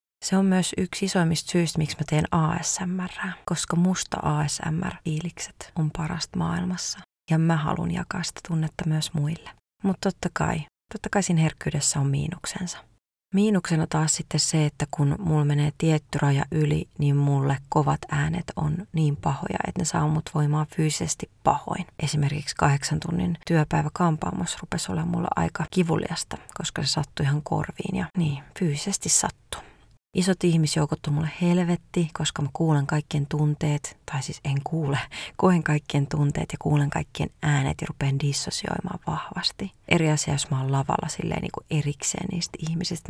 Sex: female